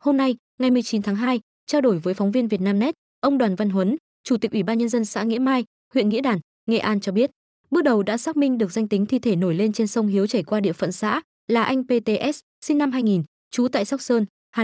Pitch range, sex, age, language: 200-255 Hz, female, 20-39, Vietnamese